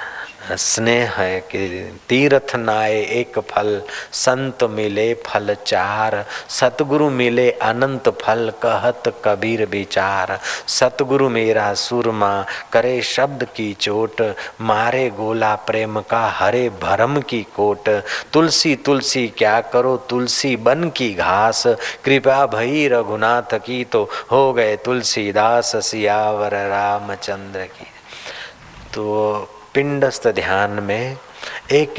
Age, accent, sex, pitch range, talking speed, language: 40-59, native, male, 100-125 Hz, 110 wpm, Hindi